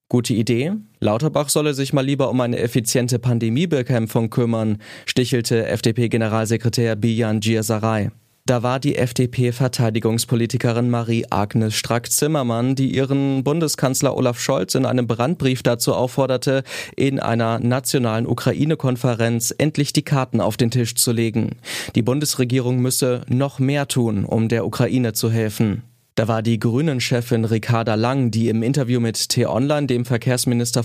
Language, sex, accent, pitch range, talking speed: German, male, German, 115-135 Hz, 130 wpm